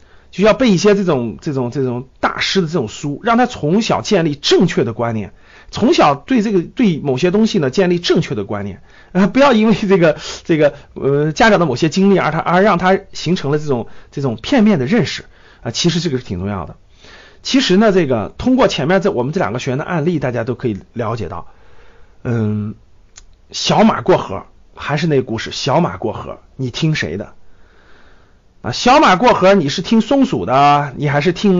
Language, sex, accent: Chinese, male, native